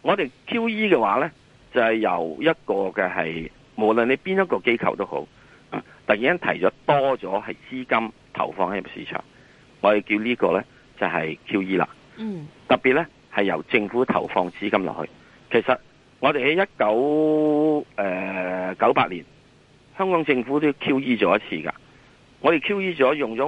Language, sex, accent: Chinese, male, native